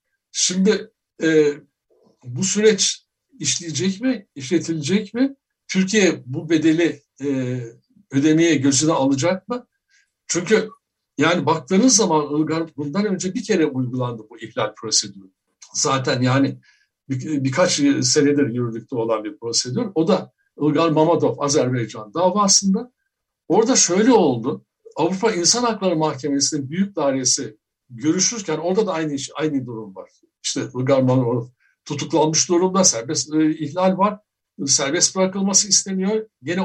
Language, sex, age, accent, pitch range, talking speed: Turkish, male, 60-79, native, 140-200 Hz, 120 wpm